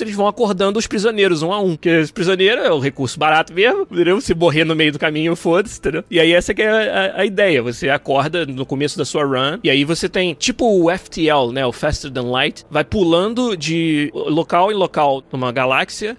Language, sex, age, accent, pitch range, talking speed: Portuguese, male, 20-39, Brazilian, 145-195 Hz, 225 wpm